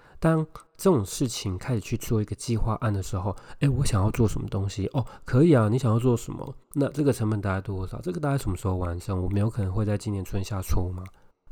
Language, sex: Chinese, male